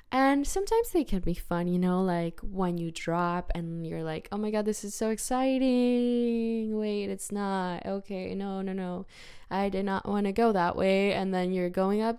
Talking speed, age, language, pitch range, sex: 205 wpm, 10-29, English, 170-205 Hz, female